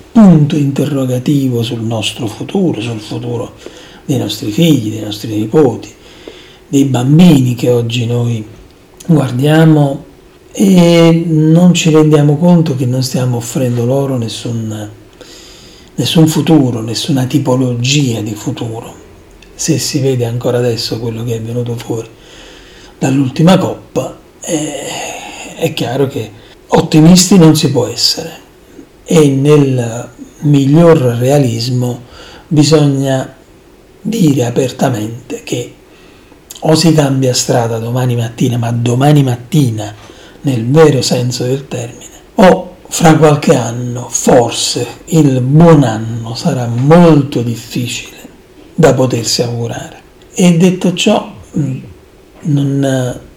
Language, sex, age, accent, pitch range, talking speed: Italian, male, 40-59, native, 120-155 Hz, 110 wpm